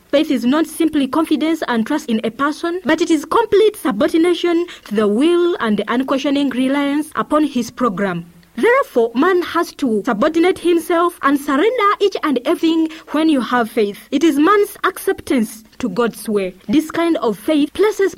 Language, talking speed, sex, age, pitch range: English, 170 wpm, female, 30-49, 240-340 Hz